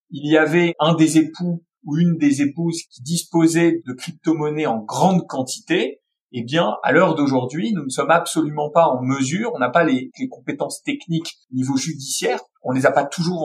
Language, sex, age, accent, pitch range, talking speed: French, male, 40-59, French, 140-190 Hz, 200 wpm